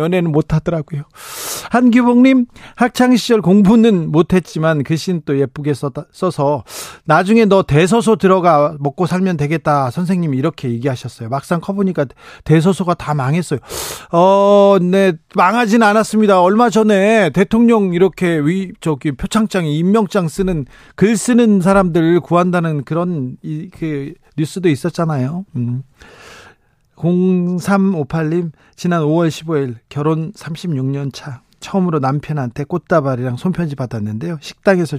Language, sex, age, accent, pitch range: Korean, male, 40-59, native, 145-190 Hz